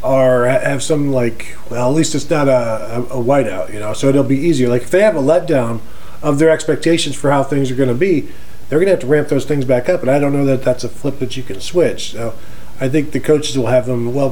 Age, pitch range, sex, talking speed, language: 40-59, 120-140 Hz, male, 270 wpm, English